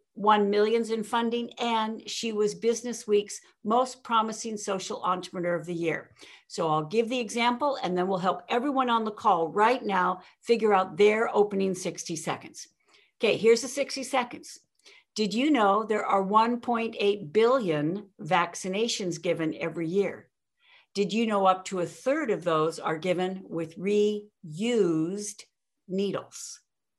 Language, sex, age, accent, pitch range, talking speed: English, female, 60-79, American, 185-245 Hz, 150 wpm